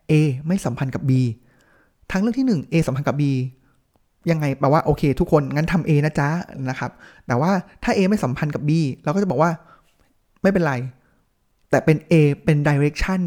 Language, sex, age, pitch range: Thai, male, 20-39, 135-175 Hz